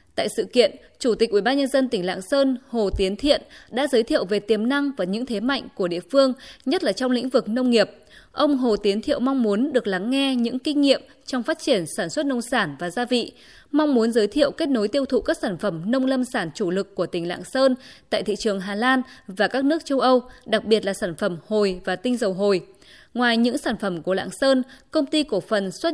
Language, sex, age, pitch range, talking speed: Vietnamese, female, 20-39, 205-265 Hz, 245 wpm